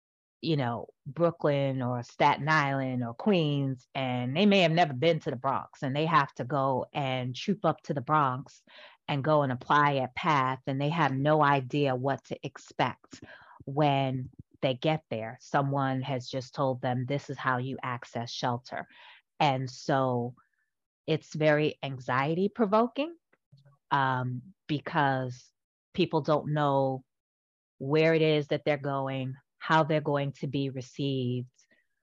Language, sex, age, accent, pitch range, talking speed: English, female, 30-49, American, 130-150 Hz, 150 wpm